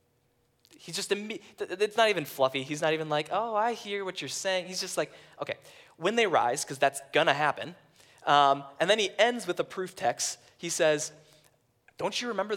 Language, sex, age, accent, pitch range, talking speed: English, male, 20-39, American, 125-175 Hz, 195 wpm